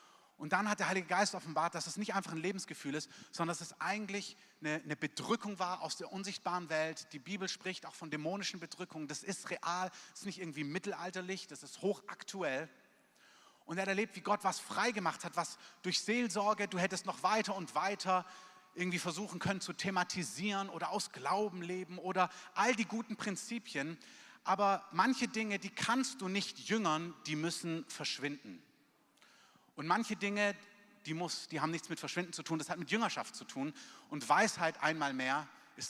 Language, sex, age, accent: German, male, 30-49, German